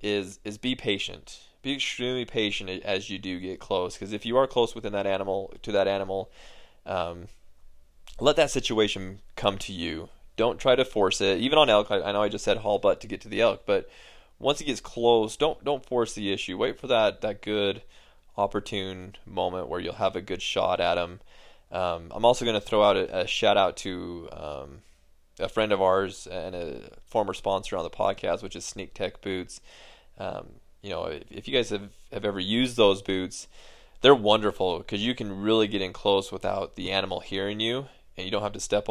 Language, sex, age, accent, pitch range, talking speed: English, male, 20-39, American, 95-110 Hz, 215 wpm